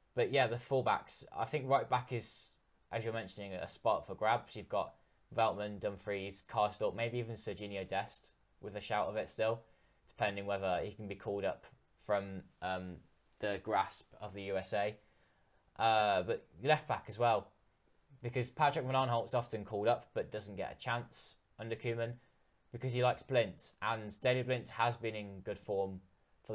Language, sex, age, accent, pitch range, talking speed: English, male, 10-29, British, 100-125 Hz, 175 wpm